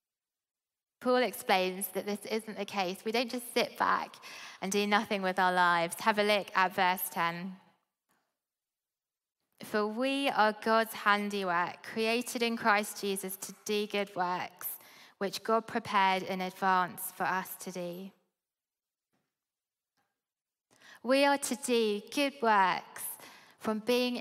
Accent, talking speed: British, 135 wpm